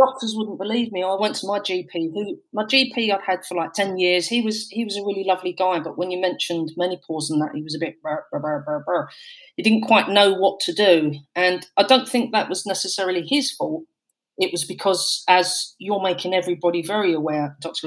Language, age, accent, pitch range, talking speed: English, 40-59, British, 155-195 Hz, 230 wpm